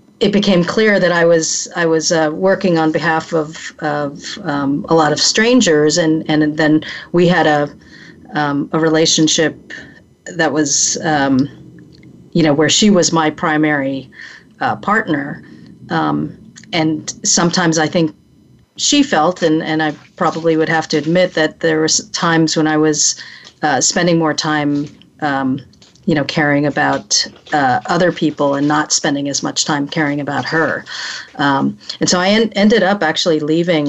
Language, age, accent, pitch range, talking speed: English, 40-59, American, 145-165 Hz, 165 wpm